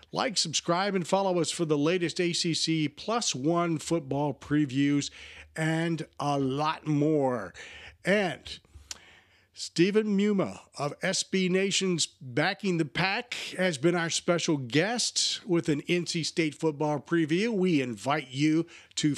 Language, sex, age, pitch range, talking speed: English, male, 50-69, 130-175 Hz, 130 wpm